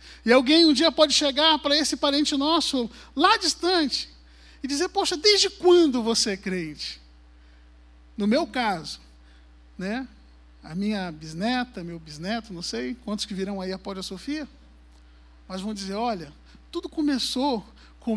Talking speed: 150 wpm